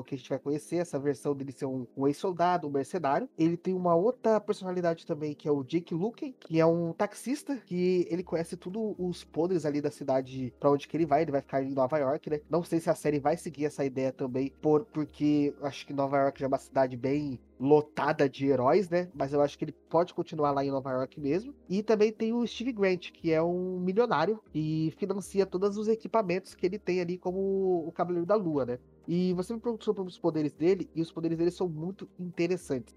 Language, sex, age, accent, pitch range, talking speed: Portuguese, male, 20-39, Brazilian, 145-180 Hz, 230 wpm